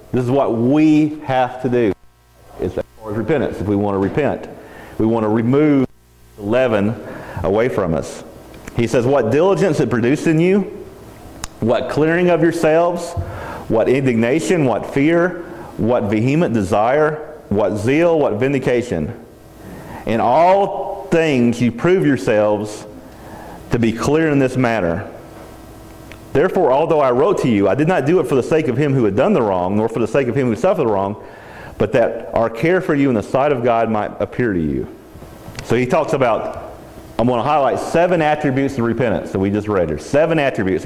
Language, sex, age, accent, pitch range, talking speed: English, male, 40-59, American, 100-150 Hz, 185 wpm